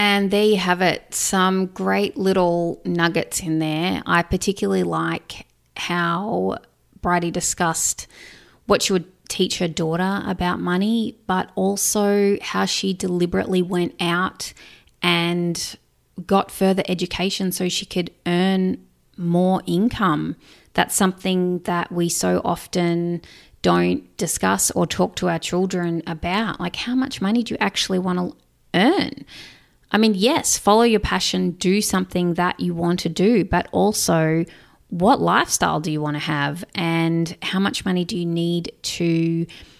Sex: female